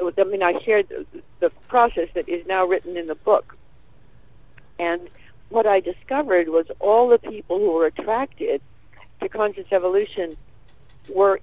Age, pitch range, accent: 50-69, 170-215 Hz, American